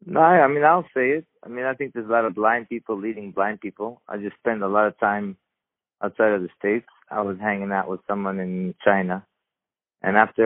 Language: English